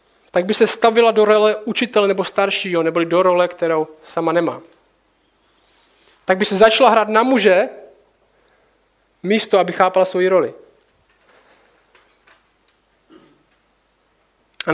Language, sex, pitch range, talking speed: Czech, male, 175-220 Hz, 115 wpm